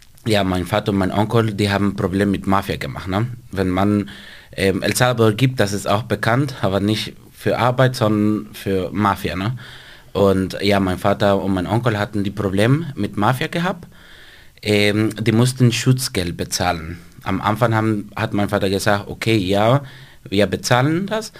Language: German